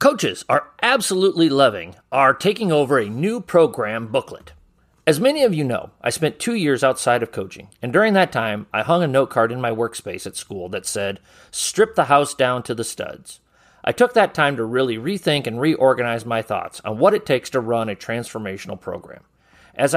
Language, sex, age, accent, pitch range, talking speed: English, male, 40-59, American, 120-175 Hz, 200 wpm